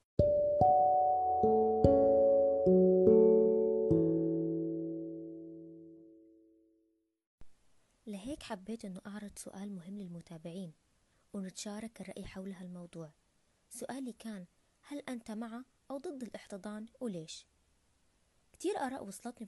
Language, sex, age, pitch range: Arabic, female, 20-39, 175-245 Hz